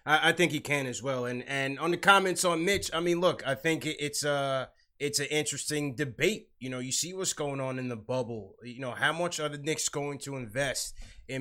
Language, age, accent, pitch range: English, 20-39, American, 120-145 Hz